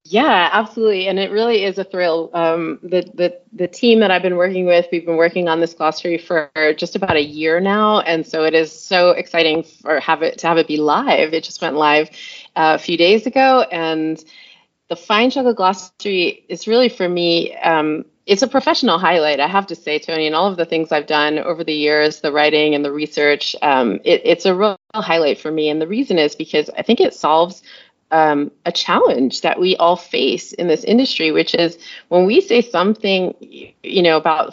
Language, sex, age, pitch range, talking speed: English, female, 30-49, 160-205 Hz, 215 wpm